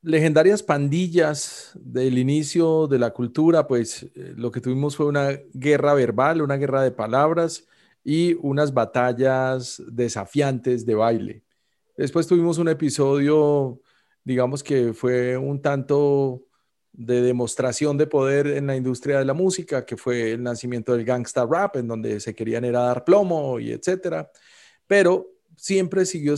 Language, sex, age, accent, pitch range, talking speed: Spanish, male, 40-59, Colombian, 125-155 Hz, 145 wpm